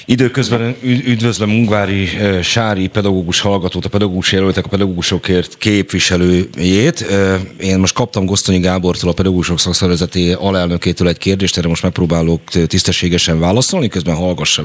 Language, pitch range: Hungarian, 75-95 Hz